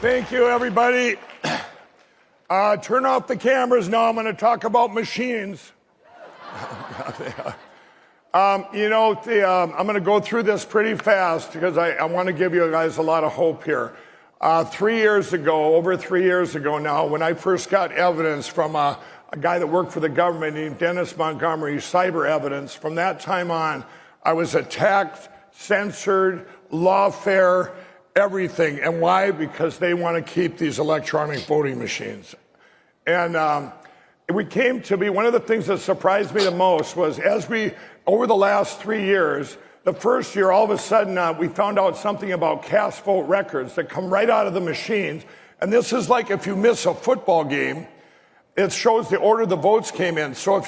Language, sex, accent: English, male, American